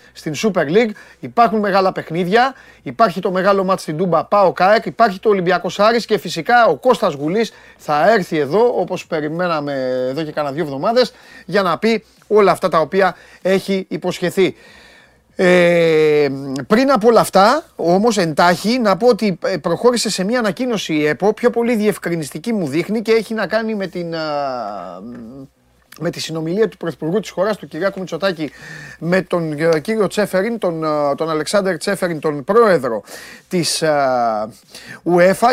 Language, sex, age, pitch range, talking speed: Greek, male, 30-49, 160-210 Hz, 155 wpm